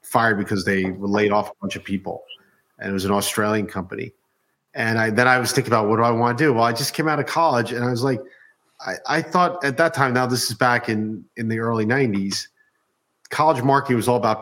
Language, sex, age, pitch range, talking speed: English, male, 40-59, 110-135 Hz, 250 wpm